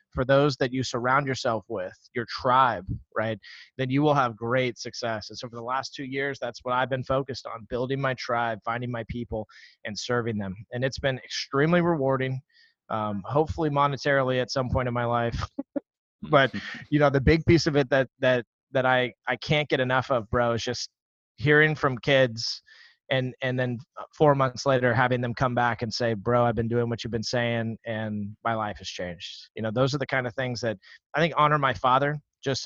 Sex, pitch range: male, 120-145 Hz